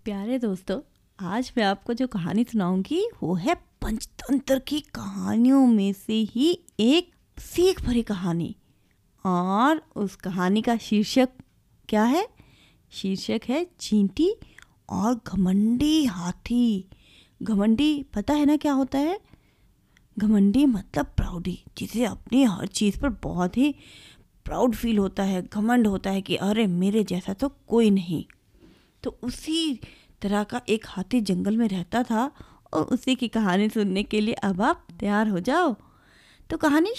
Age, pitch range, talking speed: 20-39, 195-265 Hz, 145 wpm